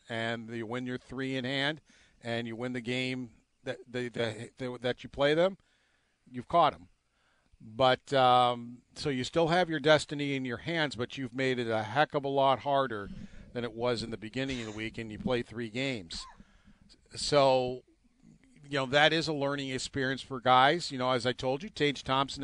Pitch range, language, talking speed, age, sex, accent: 120-145 Hz, English, 200 wpm, 50-69, male, American